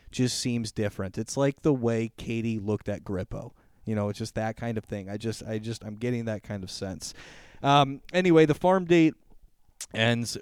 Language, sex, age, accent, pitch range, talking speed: English, male, 30-49, American, 115-175 Hz, 200 wpm